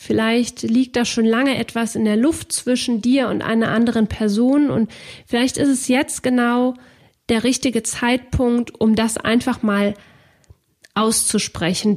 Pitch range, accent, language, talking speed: 205-240 Hz, German, German, 145 wpm